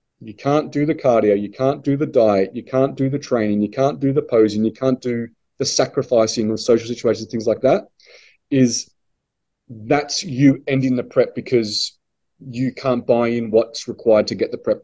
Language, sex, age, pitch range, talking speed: English, male, 30-49, 120-145 Hz, 195 wpm